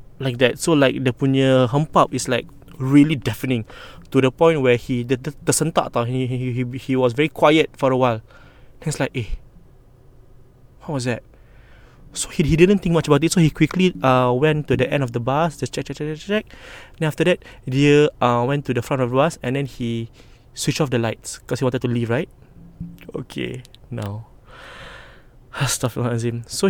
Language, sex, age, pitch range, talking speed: English, male, 20-39, 120-145 Hz, 205 wpm